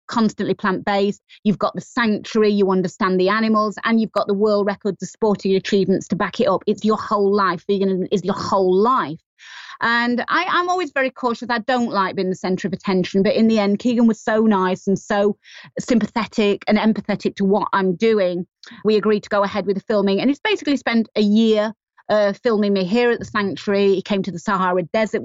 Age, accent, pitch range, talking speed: 30-49, British, 190-225 Hz, 215 wpm